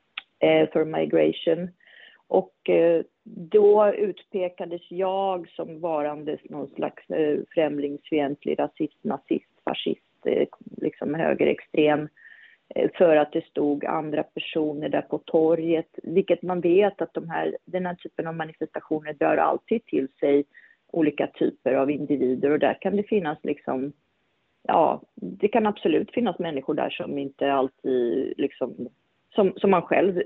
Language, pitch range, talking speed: Swedish, 150-200 Hz, 135 wpm